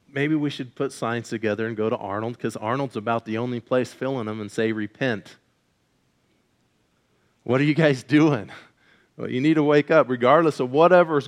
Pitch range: 115-145 Hz